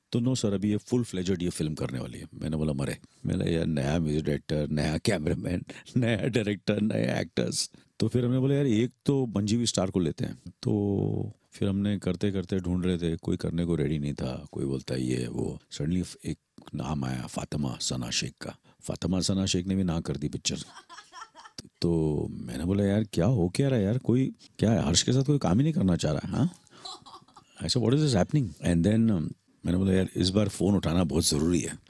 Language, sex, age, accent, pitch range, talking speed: English, male, 50-69, Indian, 80-110 Hz, 150 wpm